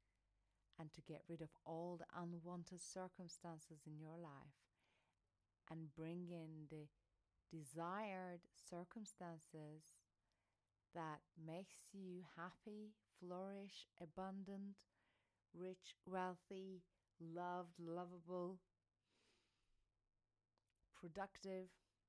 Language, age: English, 40-59